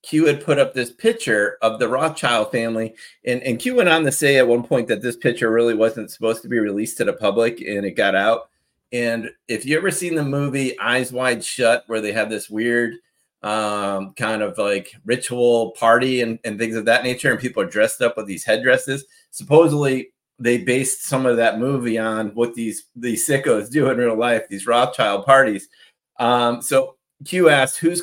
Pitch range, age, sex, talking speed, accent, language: 115-155 Hz, 30-49, male, 205 wpm, American, English